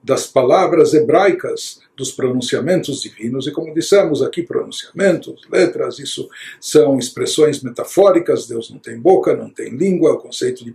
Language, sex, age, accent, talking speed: Portuguese, male, 60-79, Brazilian, 145 wpm